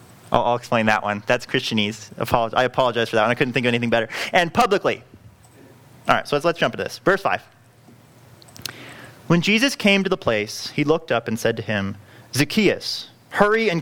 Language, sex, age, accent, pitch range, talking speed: English, male, 30-49, American, 120-150 Hz, 190 wpm